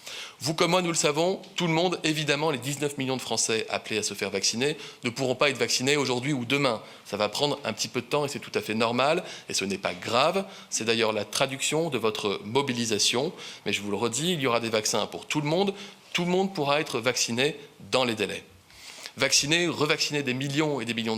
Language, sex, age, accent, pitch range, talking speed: French, male, 30-49, French, 115-145 Hz, 240 wpm